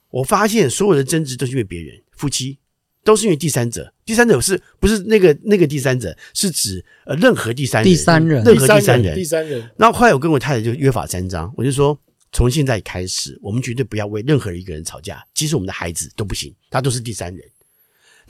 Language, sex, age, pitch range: Chinese, male, 50-69, 110-170 Hz